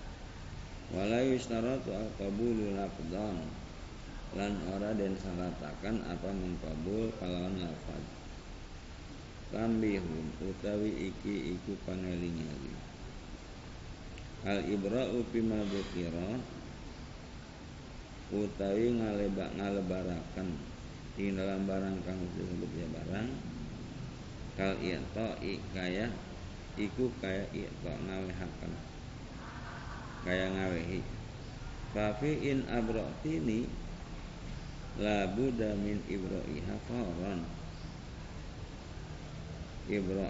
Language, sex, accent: Indonesian, male, native